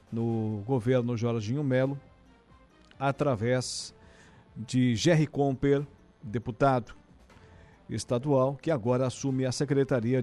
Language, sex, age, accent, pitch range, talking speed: Portuguese, male, 50-69, Brazilian, 120-145 Hz, 90 wpm